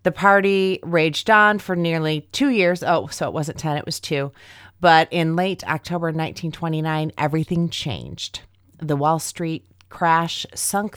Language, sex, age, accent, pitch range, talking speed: English, female, 30-49, American, 125-180 Hz, 155 wpm